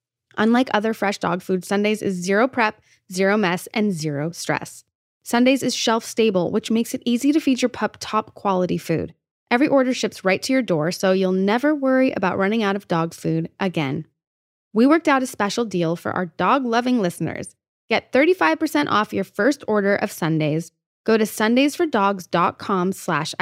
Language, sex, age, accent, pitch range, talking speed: English, female, 20-39, American, 185-280 Hz, 170 wpm